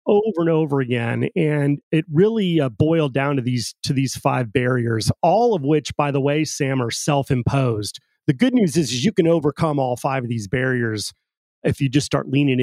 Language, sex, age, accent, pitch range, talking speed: English, male, 30-49, American, 135-170 Hz, 210 wpm